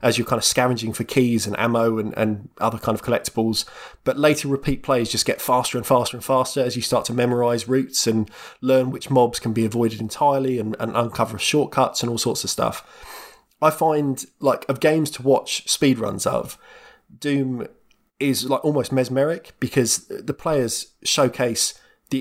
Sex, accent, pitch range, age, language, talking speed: male, British, 115-135 Hz, 20-39, English, 185 wpm